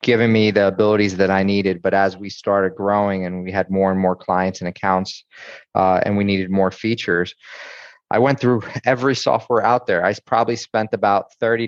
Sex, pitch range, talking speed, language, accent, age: male, 95-110 Hz, 200 wpm, English, American, 30-49